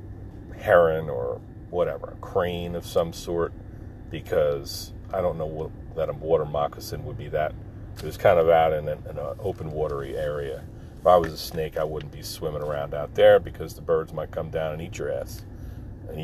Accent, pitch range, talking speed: American, 95-125 Hz, 200 wpm